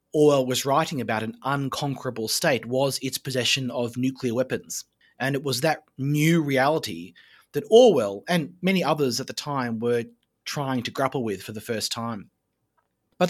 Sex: male